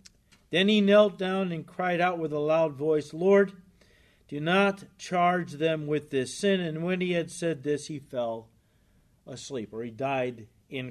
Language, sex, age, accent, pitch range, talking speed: English, male, 50-69, American, 155-205 Hz, 175 wpm